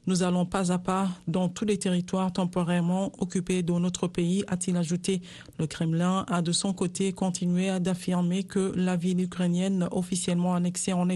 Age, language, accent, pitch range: 50-69, French, French, 180-195 Hz